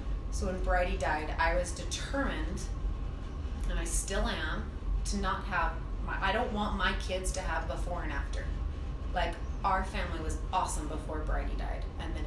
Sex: female